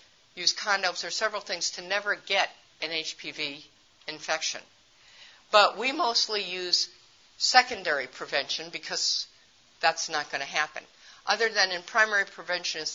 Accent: American